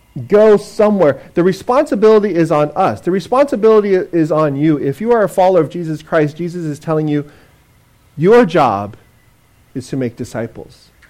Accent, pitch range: American, 160-230 Hz